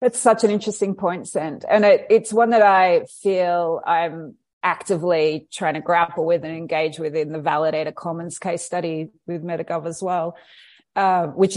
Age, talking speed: 30-49, 175 wpm